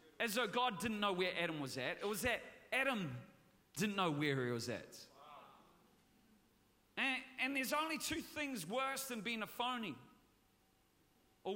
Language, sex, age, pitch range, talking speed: English, male, 40-59, 225-300 Hz, 160 wpm